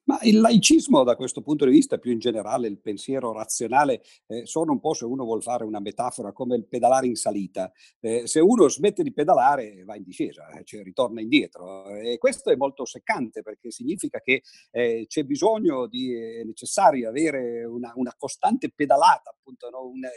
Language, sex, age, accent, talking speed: Italian, male, 50-69, native, 190 wpm